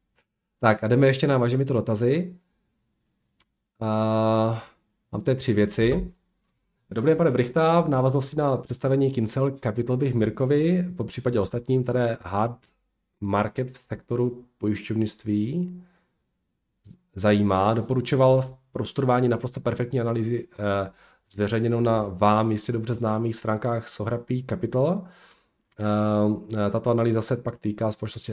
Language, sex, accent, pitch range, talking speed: Czech, male, native, 100-130 Hz, 120 wpm